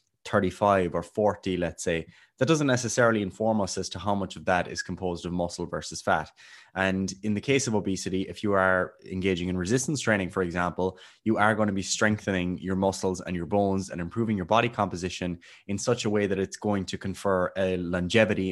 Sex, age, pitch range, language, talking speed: male, 20-39, 90-110 Hz, English, 205 wpm